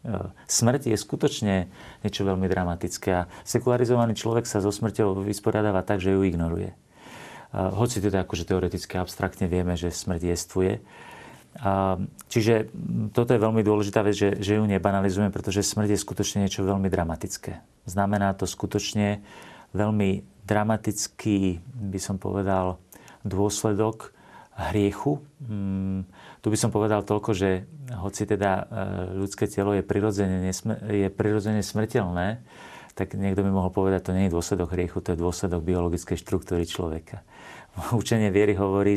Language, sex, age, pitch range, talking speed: Slovak, male, 40-59, 95-105 Hz, 130 wpm